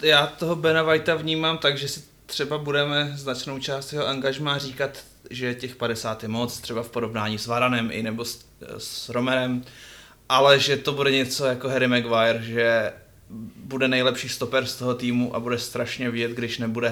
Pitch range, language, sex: 115-130 Hz, Czech, male